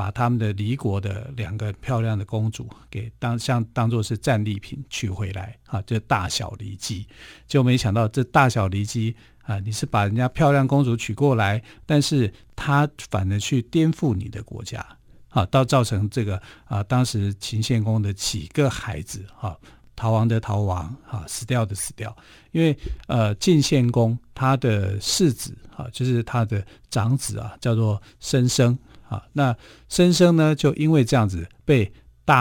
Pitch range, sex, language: 105-130 Hz, male, Chinese